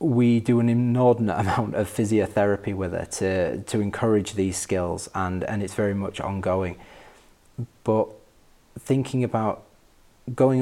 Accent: British